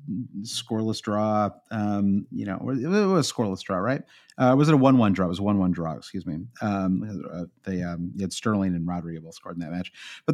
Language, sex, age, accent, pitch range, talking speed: English, male, 30-49, American, 100-150 Hz, 220 wpm